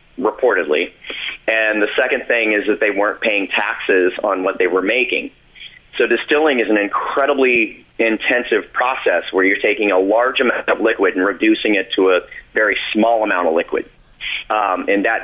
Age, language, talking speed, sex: 30-49, English, 175 wpm, male